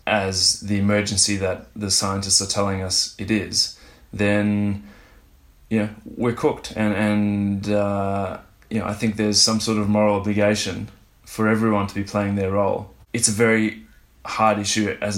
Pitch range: 95-105 Hz